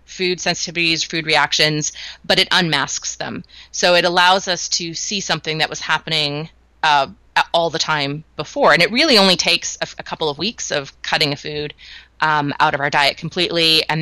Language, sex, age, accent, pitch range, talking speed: English, female, 30-49, American, 150-180 Hz, 190 wpm